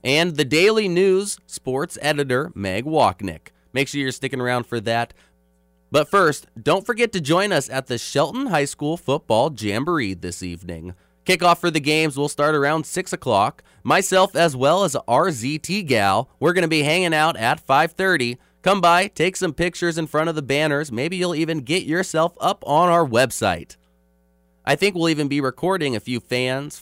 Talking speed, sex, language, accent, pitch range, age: 185 wpm, male, English, American, 125-170 Hz, 20-39